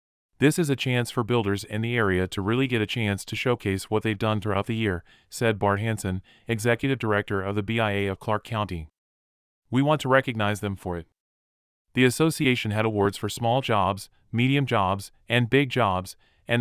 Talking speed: 190 wpm